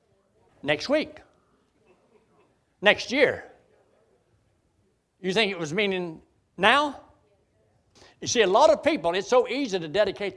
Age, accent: 60-79, American